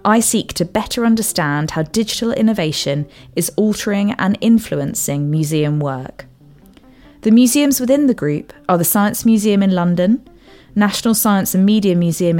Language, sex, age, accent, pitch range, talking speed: English, female, 20-39, British, 160-215 Hz, 145 wpm